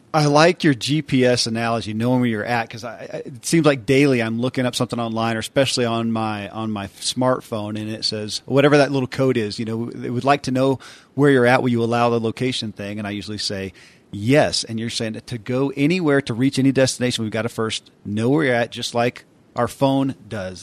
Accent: American